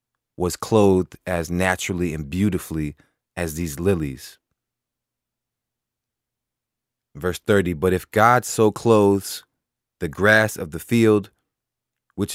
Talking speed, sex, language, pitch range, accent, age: 105 wpm, male, English, 90-120 Hz, American, 30-49